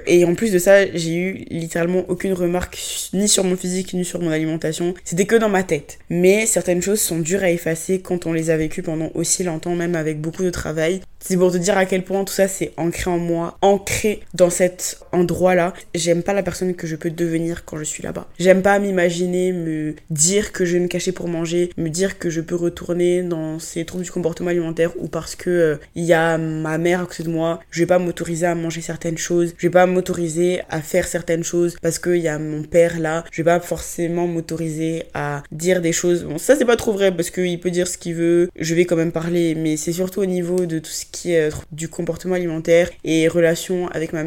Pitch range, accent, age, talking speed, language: 165-180 Hz, French, 20-39, 240 wpm, French